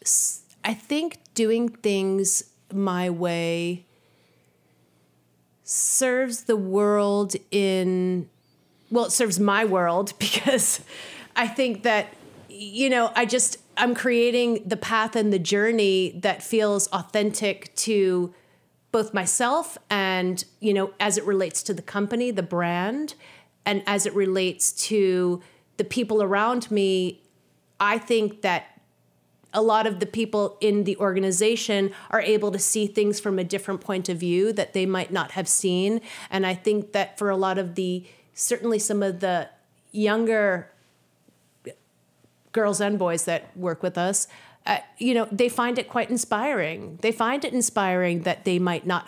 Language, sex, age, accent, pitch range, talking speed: English, female, 30-49, American, 180-220 Hz, 150 wpm